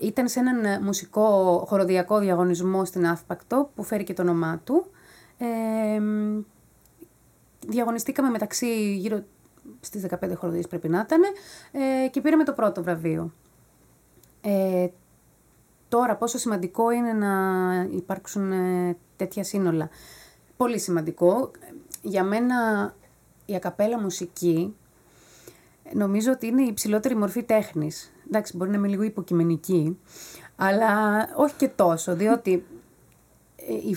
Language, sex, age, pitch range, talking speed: Greek, female, 30-49, 180-245 Hz, 115 wpm